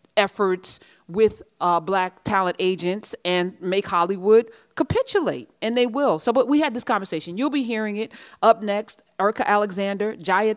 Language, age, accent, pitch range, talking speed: English, 30-49, American, 160-205 Hz, 160 wpm